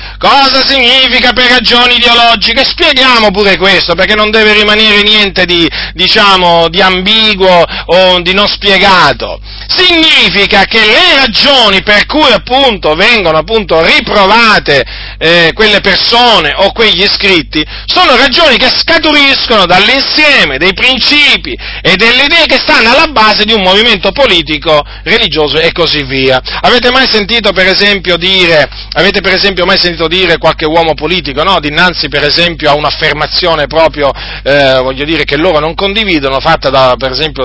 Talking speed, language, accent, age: 145 wpm, Italian, native, 40-59